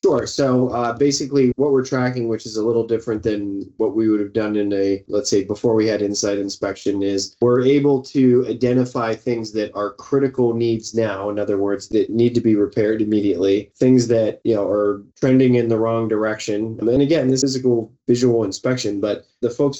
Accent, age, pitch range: American, 20-39, 105-125 Hz